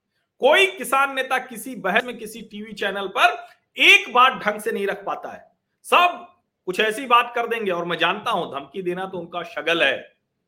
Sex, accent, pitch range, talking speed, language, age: male, native, 160-235 Hz, 200 wpm, Hindi, 50-69